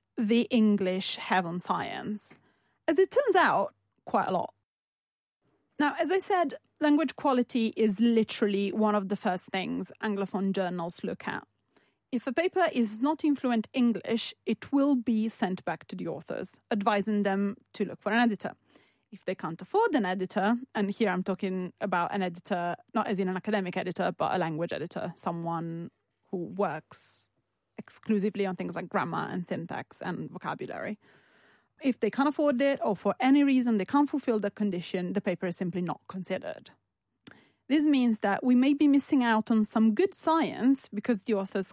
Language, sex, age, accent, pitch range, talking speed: English, female, 30-49, British, 190-245 Hz, 175 wpm